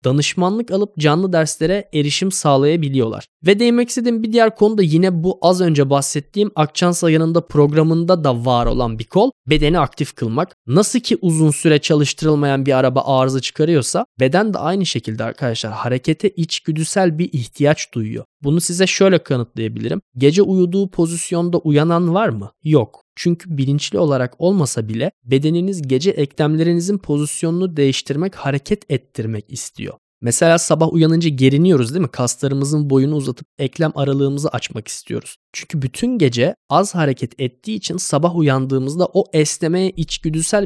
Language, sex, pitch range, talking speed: Turkish, male, 130-175 Hz, 145 wpm